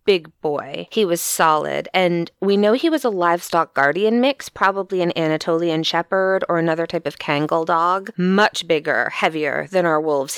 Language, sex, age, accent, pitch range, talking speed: English, female, 20-39, American, 160-195 Hz, 175 wpm